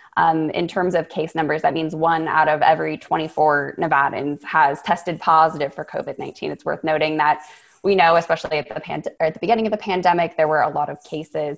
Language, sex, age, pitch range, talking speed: English, female, 20-39, 150-165 Hz, 220 wpm